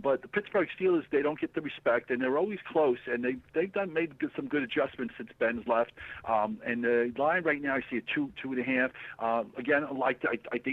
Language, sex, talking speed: English, male, 240 wpm